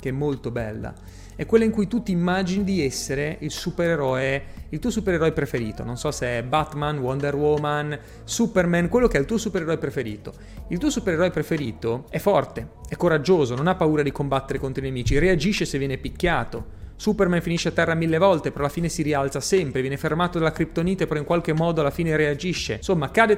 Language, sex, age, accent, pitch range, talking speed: Italian, male, 30-49, native, 130-175 Hz, 200 wpm